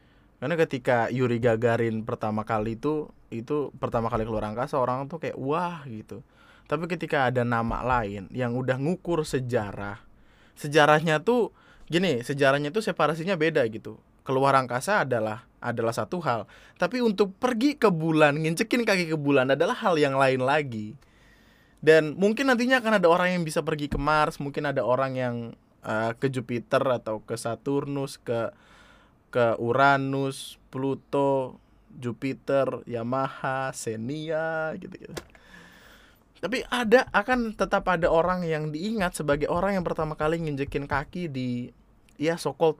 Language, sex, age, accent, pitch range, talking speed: Indonesian, male, 20-39, native, 115-155 Hz, 145 wpm